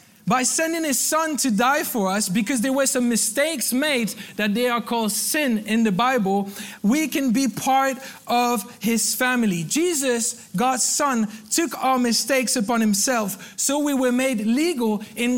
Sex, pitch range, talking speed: male, 210-260 Hz, 170 wpm